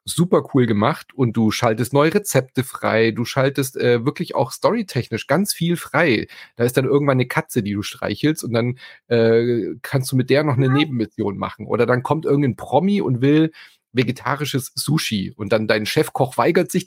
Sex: male